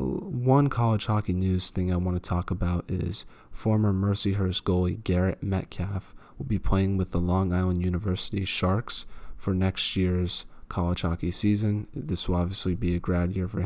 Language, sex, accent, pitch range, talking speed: English, male, American, 90-95 Hz, 170 wpm